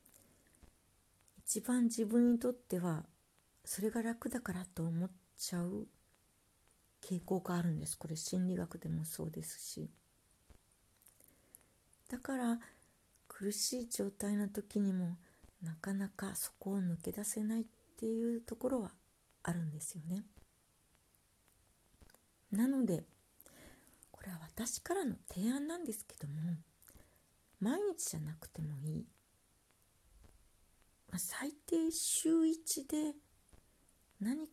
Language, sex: Japanese, female